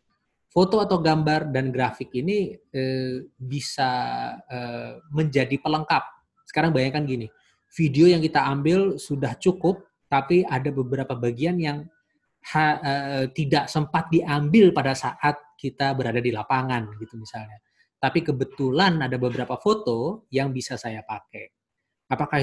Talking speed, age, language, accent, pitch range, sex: 130 wpm, 20-39, Indonesian, native, 125-170 Hz, male